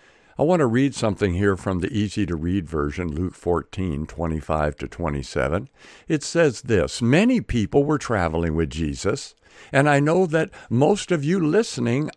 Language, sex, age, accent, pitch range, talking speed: English, male, 60-79, American, 95-155 Hz, 150 wpm